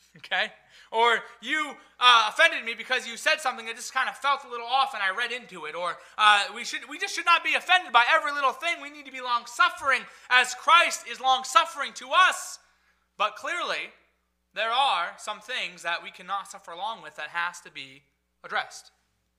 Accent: American